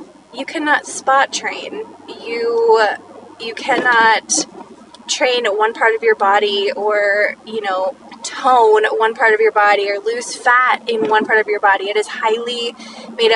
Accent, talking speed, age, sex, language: American, 155 wpm, 20-39, female, English